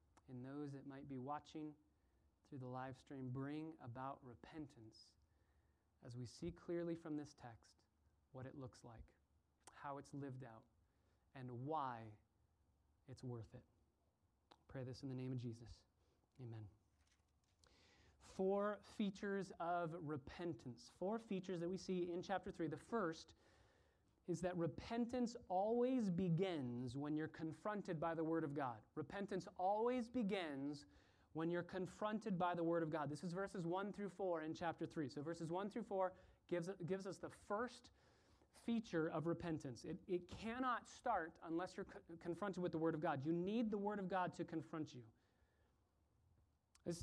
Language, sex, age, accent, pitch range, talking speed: English, male, 30-49, American, 115-180 Hz, 160 wpm